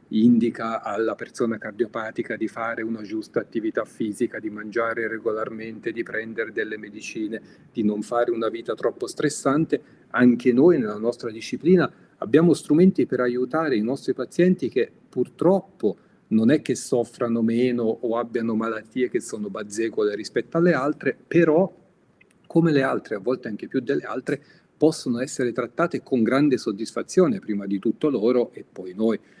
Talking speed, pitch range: 155 wpm, 110-145 Hz